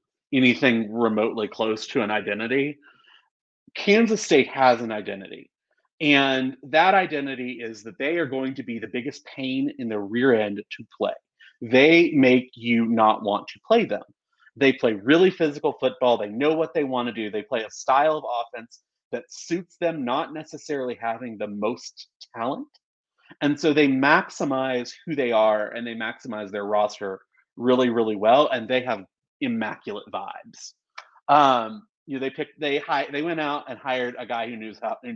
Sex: male